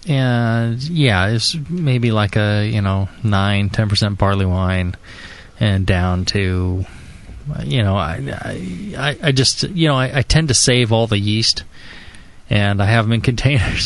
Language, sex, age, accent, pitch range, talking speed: English, male, 20-39, American, 105-130 Hz, 165 wpm